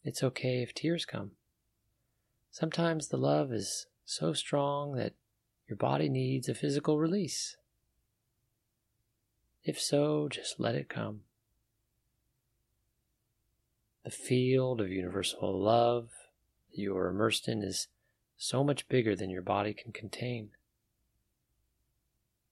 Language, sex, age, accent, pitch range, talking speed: English, male, 30-49, American, 110-130 Hz, 115 wpm